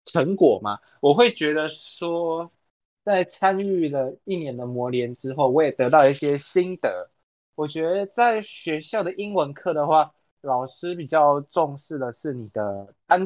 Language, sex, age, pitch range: Chinese, male, 20-39, 120-160 Hz